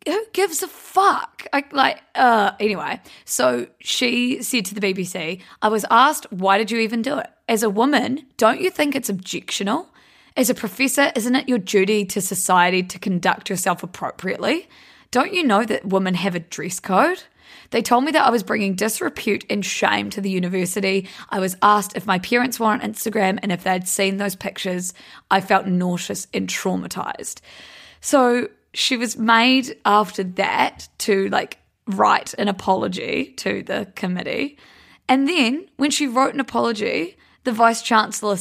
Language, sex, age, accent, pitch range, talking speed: English, female, 20-39, Australian, 190-245 Hz, 170 wpm